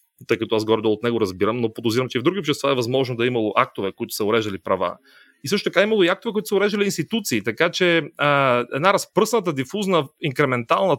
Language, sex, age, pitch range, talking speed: Bulgarian, male, 30-49, 120-165 Hz, 225 wpm